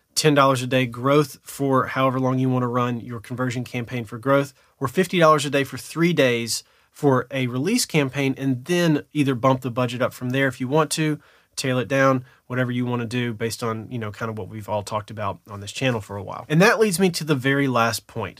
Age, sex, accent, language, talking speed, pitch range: 30-49, male, American, English, 240 wpm, 125-155 Hz